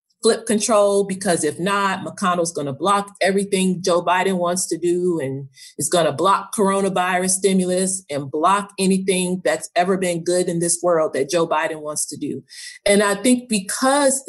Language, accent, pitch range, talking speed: English, American, 170-200 Hz, 170 wpm